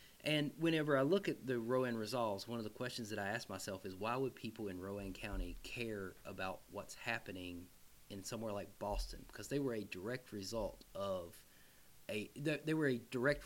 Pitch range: 95-115 Hz